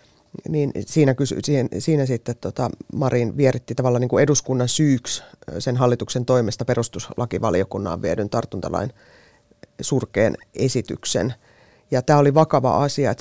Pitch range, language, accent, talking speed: 125-155 Hz, Finnish, native, 125 wpm